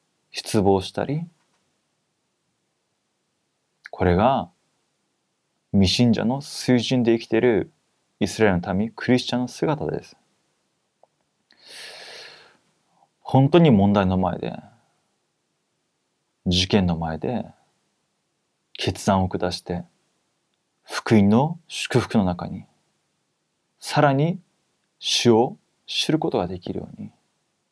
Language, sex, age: Korean, male, 30-49